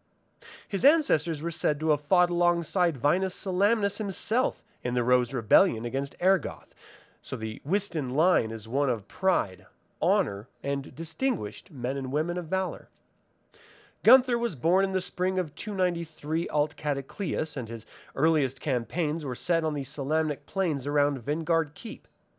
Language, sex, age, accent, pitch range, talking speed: English, male, 30-49, American, 135-185 Hz, 150 wpm